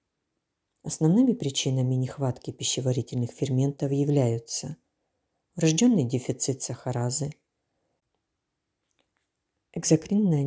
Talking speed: 55 wpm